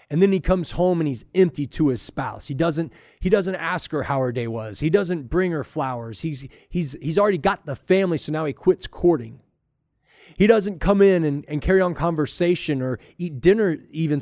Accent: American